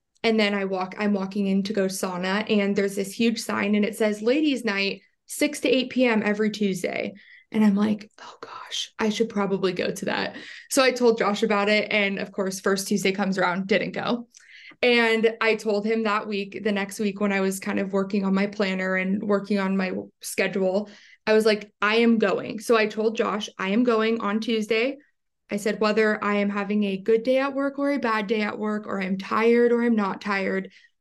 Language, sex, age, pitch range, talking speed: English, female, 20-39, 200-235 Hz, 220 wpm